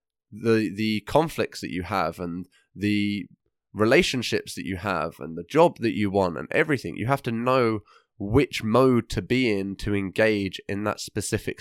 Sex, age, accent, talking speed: male, 20-39, British, 175 wpm